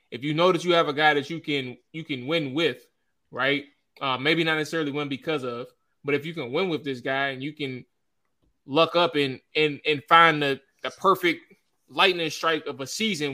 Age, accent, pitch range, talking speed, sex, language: 20-39, American, 130-170 Hz, 215 wpm, male, English